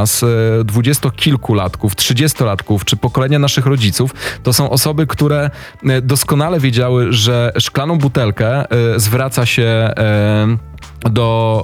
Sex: male